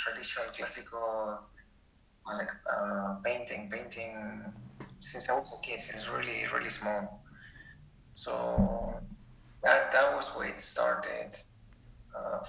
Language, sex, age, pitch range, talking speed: English, male, 20-39, 110-150 Hz, 110 wpm